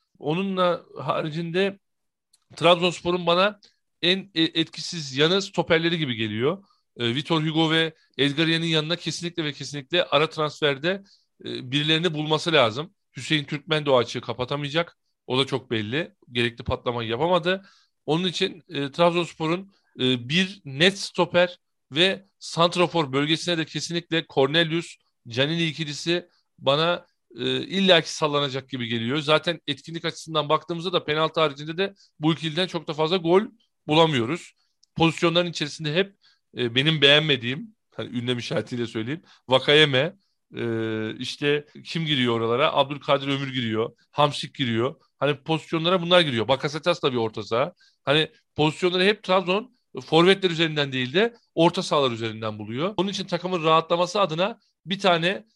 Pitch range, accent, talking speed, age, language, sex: 140-175 Hz, native, 130 wpm, 40-59, Turkish, male